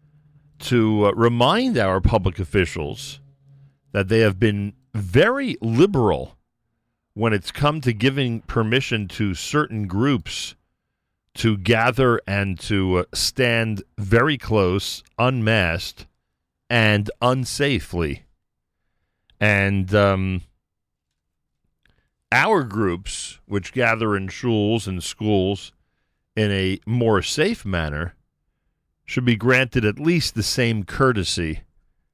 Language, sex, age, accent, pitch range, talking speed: English, male, 40-59, American, 90-115 Hz, 105 wpm